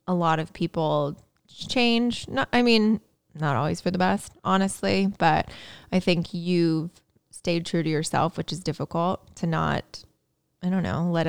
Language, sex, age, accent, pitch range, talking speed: English, female, 20-39, American, 160-190 Hz, 165 wpm